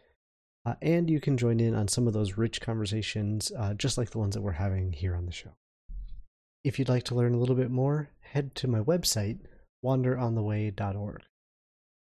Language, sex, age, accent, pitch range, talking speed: English, male, 30-49, American, 105-130 Hz, 190 wpm